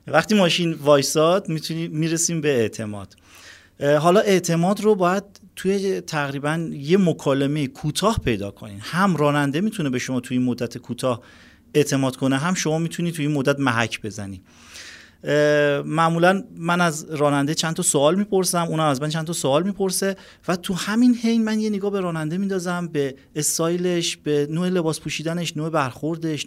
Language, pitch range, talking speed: Persian, 135-170 Hz, 155 wpm